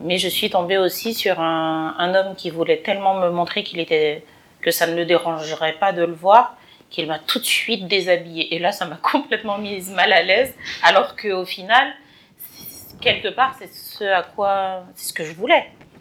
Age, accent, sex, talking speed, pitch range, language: 40-59, French, female, 200 wpm, 165-200 Hz, French